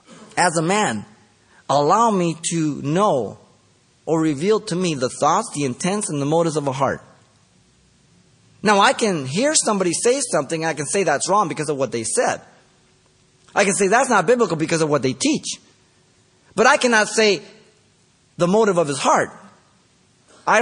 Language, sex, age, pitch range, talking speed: English, male, 30-49, 145-200 Hz, 170 wpm